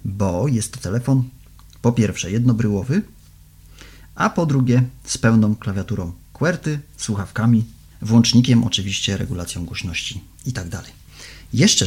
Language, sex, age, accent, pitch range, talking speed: Polish, male, 40-59, native, 95-120 Hz, 105 wpm